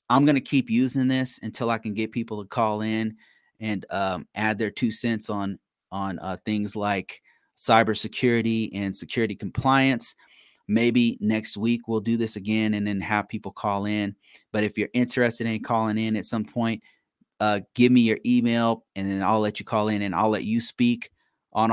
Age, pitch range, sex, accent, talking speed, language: 30-49, 105-120 Hz, male, American, 195 wpm, English